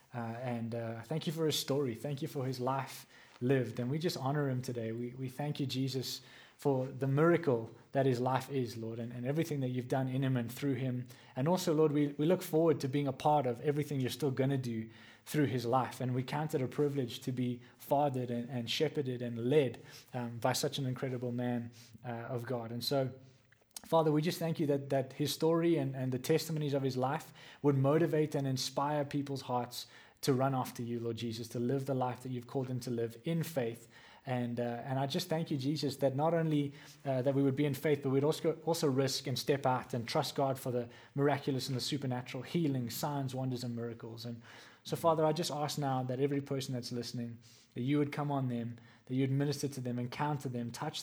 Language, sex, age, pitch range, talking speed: English, male, 20-39, 125-145 Hz, 230 wpm